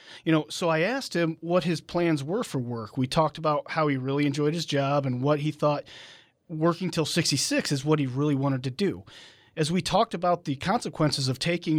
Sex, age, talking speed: male, 40-59, 220 wpm